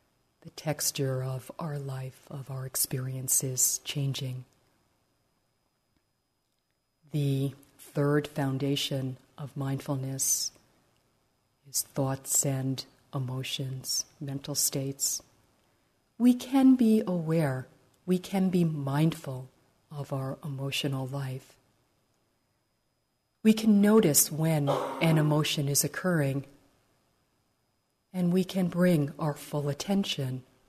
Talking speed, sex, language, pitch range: 90 wpm, female, English, 130-150 Hz